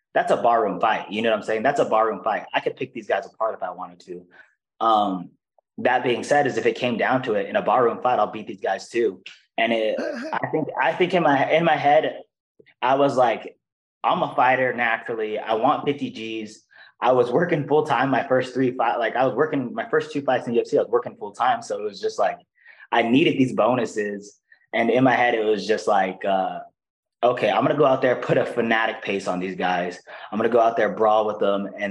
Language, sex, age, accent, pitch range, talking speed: English, male, 20-39, American, 100-150 Hz, 240 wpm